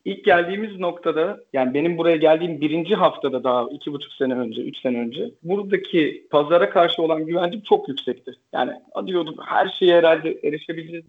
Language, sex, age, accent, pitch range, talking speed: Turkish, male, 40-59, native, 140-175 Hz, 160 wpm